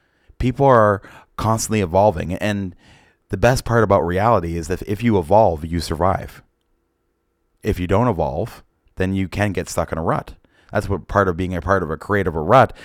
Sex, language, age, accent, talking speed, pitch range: male, English, 30-49, American, 185 wpm, 85-105 Hz